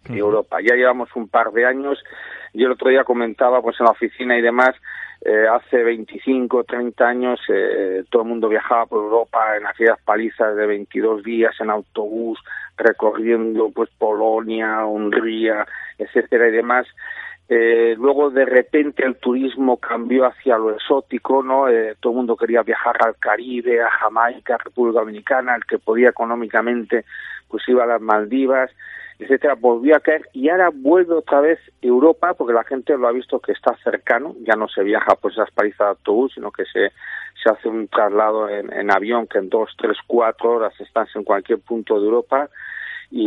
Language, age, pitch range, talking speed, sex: Spanish, 40-59, 115-135 Hz, 180 wpm, male